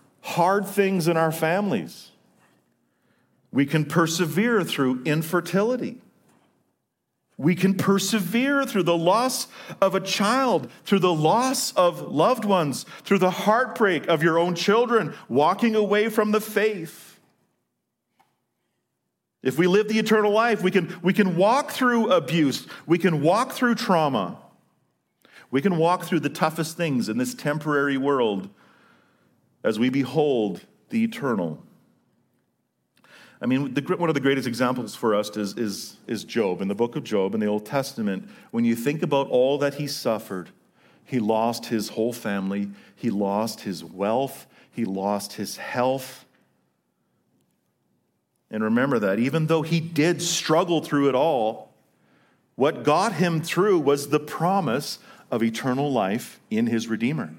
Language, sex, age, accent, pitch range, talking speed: English, male, 40-59, American, 130-200 Hz, 145 wpm